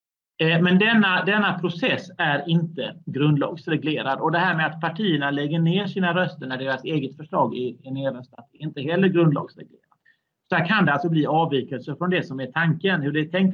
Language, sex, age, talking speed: Swedish, male, 30-49, 200 wpm